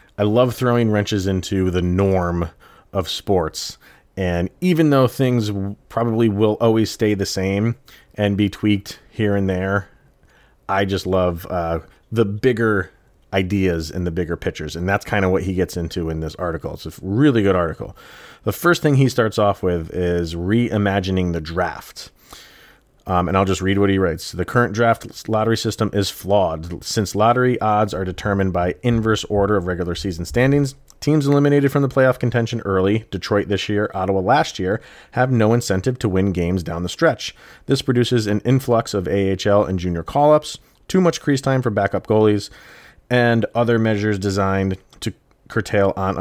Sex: male